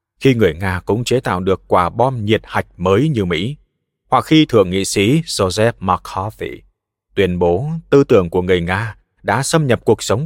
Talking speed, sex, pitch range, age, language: 195 wpm, male, 90-125 Hz, 20-39, Vietnamese